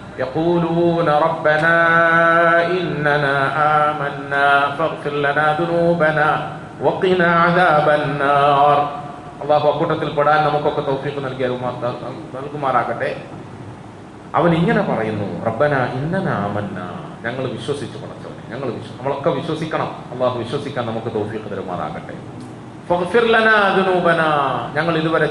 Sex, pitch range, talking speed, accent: male, 130-160 Hz, 50 wpm, native